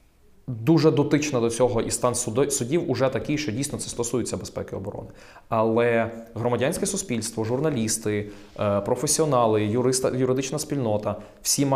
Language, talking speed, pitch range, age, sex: Ukrainian, 115 wpm, 105-125 Hz, 20-39, male